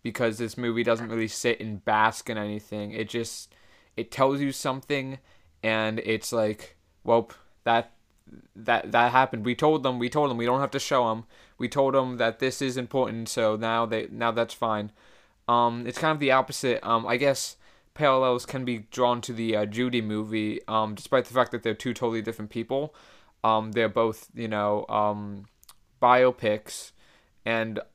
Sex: male